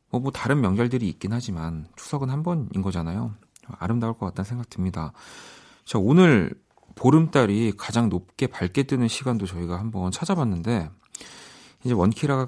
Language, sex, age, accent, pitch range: Korean, male, 40-59, native, 100-140 Hz